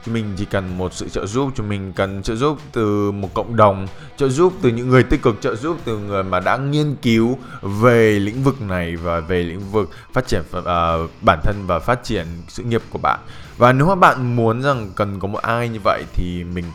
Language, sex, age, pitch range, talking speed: Vietnamese, male, 20-39, 90-120 Hz, 230 wpm